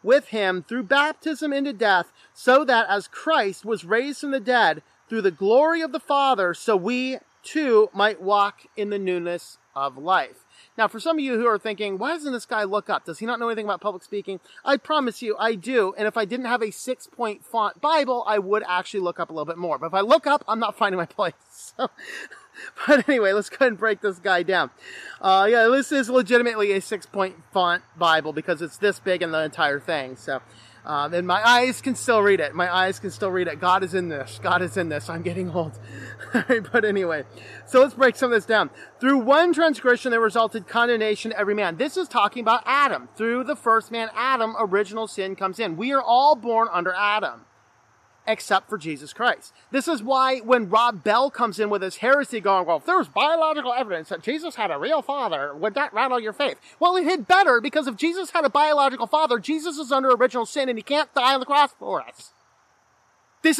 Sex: male